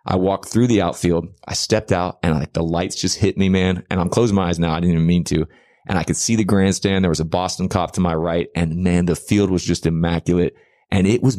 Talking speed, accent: 270 wpm, American